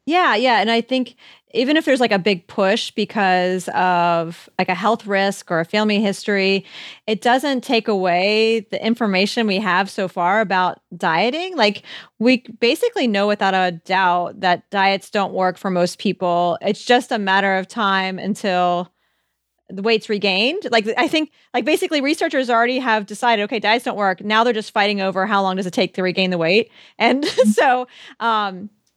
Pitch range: 190-240 Hz